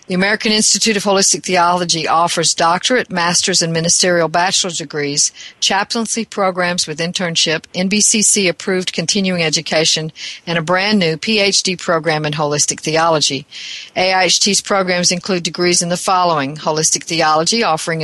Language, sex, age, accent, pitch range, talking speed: English, female, 50-69, American, 165-200 Hz, 125 wpm